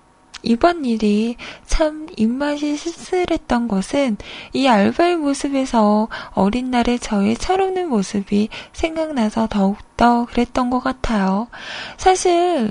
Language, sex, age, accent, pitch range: Korean, female, 20-39, native, 215-290 Hz